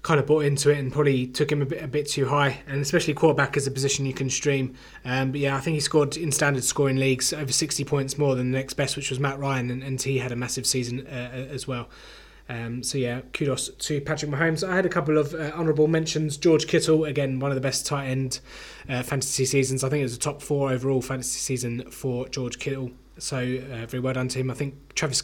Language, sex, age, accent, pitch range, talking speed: English, male, 20-39, British, 125-145 Hz, 255 wpm